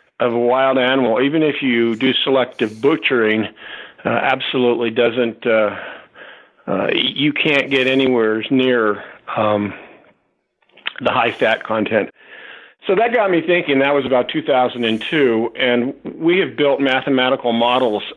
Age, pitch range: 50-69, 110-130 Hz